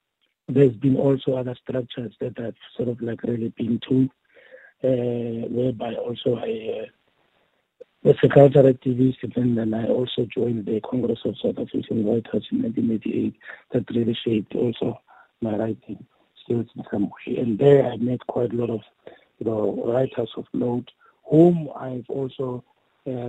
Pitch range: 115-130 Hz